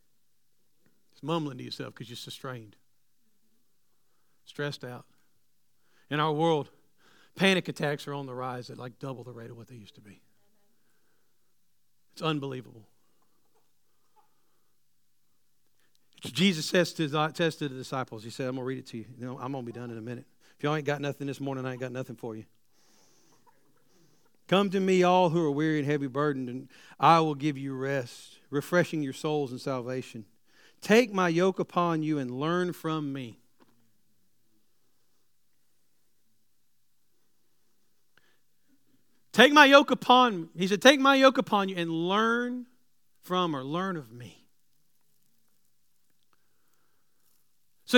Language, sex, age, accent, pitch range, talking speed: English, male, 50-69, American, 130-190 Hz, 145 wpm